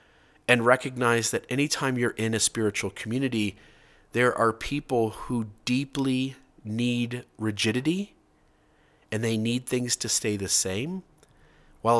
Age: 30-49